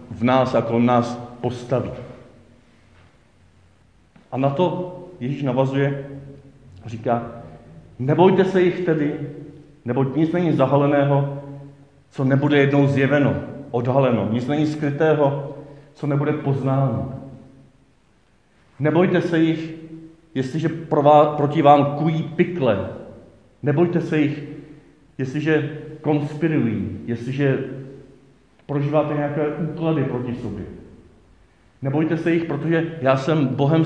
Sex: male